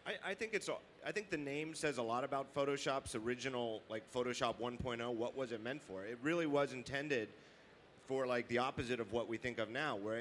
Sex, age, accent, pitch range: male, 30-49, American, 115-145 Hz